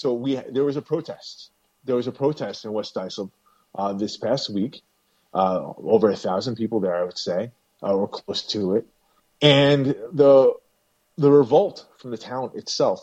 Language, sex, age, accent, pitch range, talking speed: English, male, 30-49, American, 110-135 Hz, 180 wpm